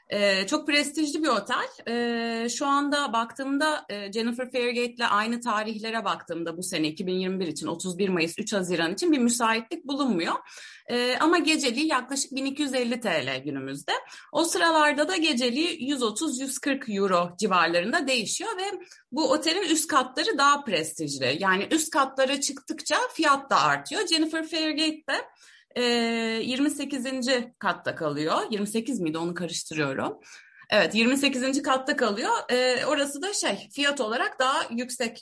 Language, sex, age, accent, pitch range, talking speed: Turkish, female, 30-49, native, 225-295 Hz, 130 wpm